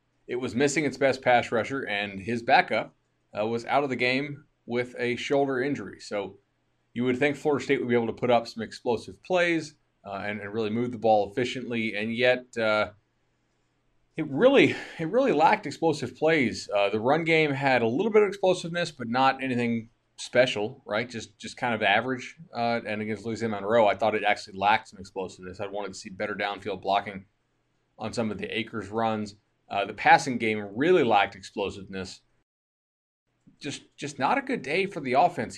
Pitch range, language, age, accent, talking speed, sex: 110-155 Hz, English, 20-39, American, 190 wpm, male